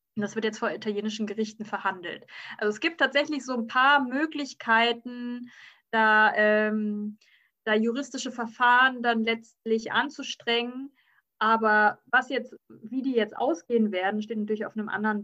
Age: 20-39